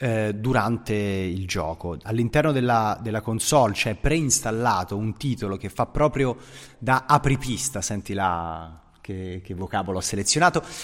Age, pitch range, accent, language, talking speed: 30-49, 105-135 Hz, native, Italian, 135 wpm